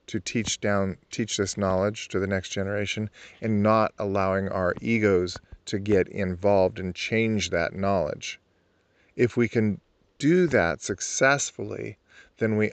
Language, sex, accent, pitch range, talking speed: English, male, American, 95-110 Hz, 140 wpm